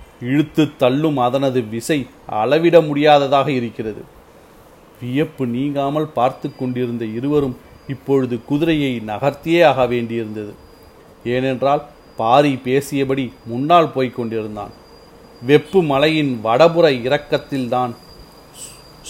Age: 40-59